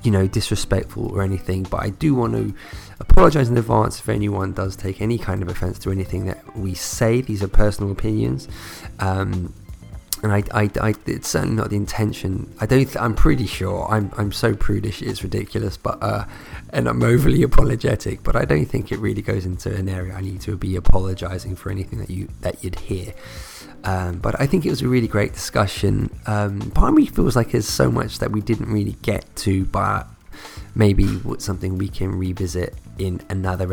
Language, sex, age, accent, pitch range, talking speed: English, male, 20-39, British, 95-110 Hz, 200 wpm